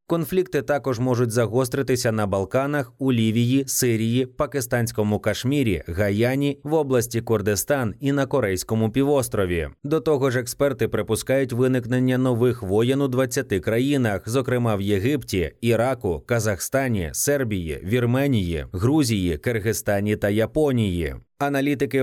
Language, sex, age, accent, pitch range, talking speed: Ukrainian, male, 20-39, native, 105-135 Hz, 115 wpm